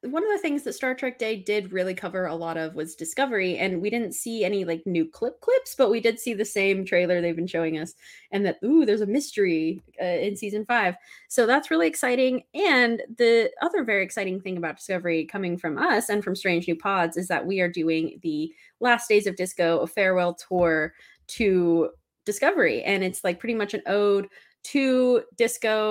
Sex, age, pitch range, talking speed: female, 20-39, 180-250 Hz, 210 wpm